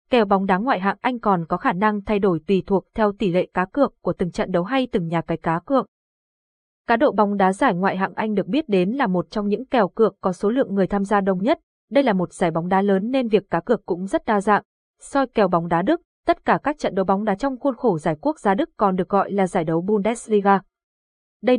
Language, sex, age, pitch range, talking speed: Vietnamese, female, 20-39, 185-235 Hz, 265 wpm